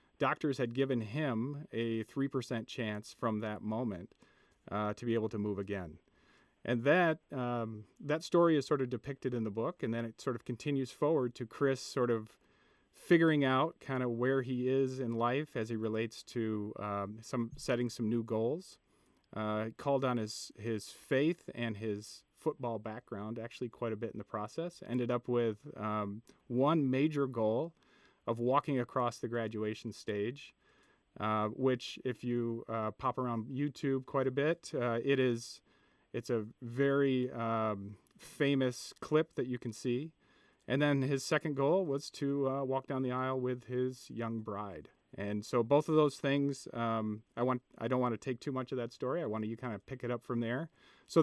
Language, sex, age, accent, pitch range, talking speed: English, male, 40-59, American, 115-140 Hz, 185 wpm